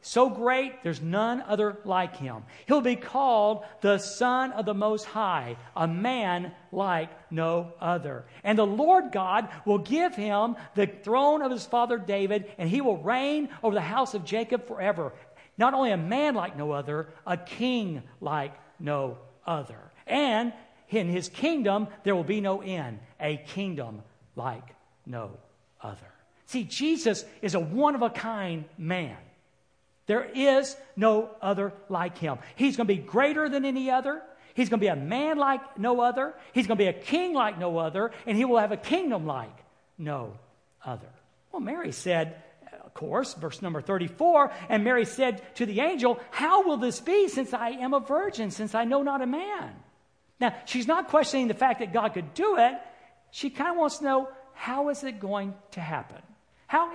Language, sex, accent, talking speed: English, male, American, 180 wpm